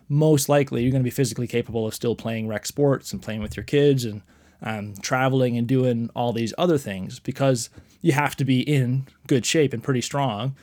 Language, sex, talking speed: English, male, 215 wpm